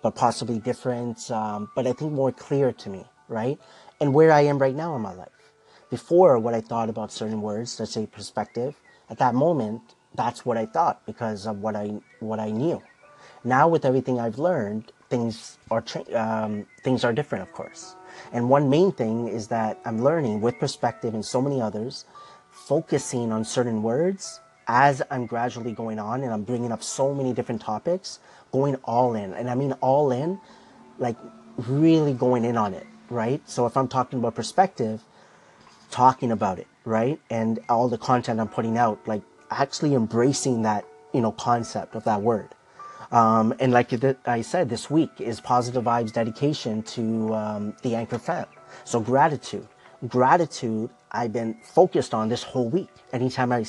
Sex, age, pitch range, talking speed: male, 30-49, 110-135 Hz, 180 wpm